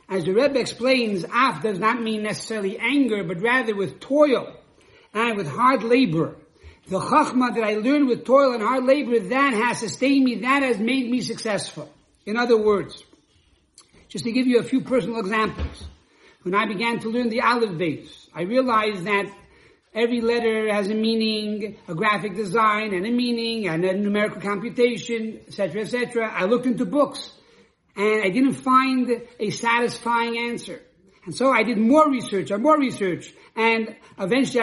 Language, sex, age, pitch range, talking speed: English, male, 60-79, 205-245 Hz, 170 wpm